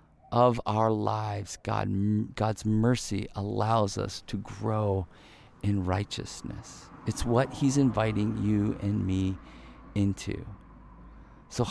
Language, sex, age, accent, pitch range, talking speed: English, male, 40-59, American, 100-120 Hz, 100 wpm